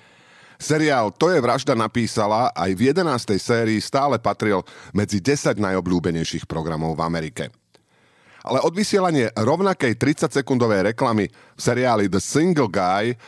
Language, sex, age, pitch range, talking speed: Slovak, male, 40-59, 100-145 Hz, 120 wpm